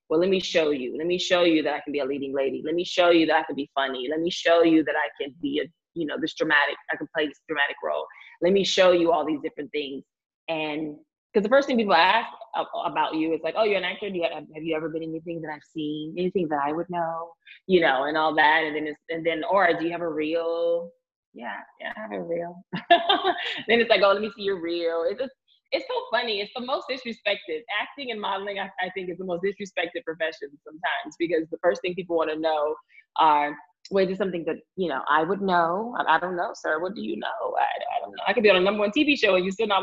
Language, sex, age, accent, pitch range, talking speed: English, female, 20-39, American, 160-210 Hz, 270 wpm